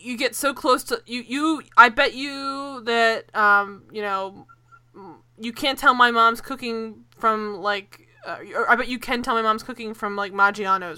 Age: 20-39